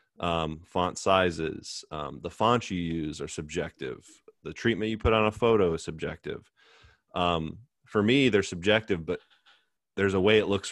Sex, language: male, English